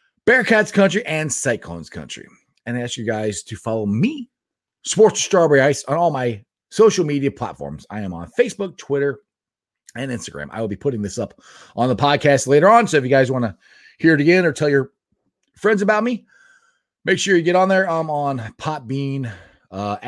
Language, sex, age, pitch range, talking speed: English, male, 30-49, 115-165 Hz, 195 wpm